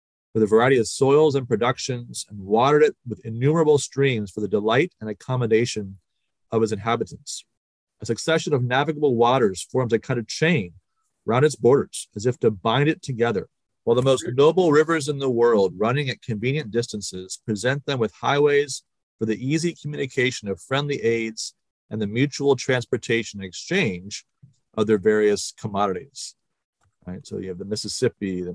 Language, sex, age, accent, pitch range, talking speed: English, male, 40-59, American, 105-135 Hz, 170 wpm